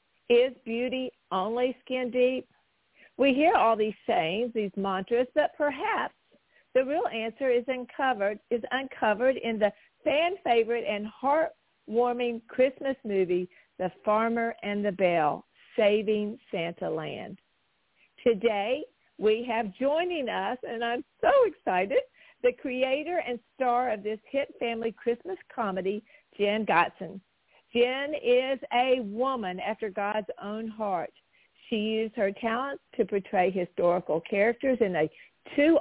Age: 50-69